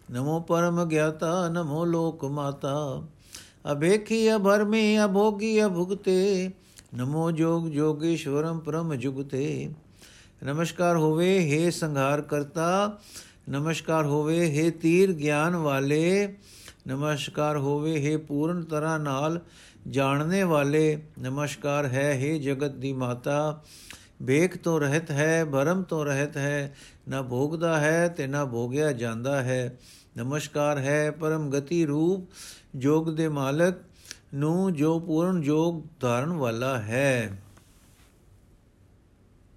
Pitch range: 140-175 Hz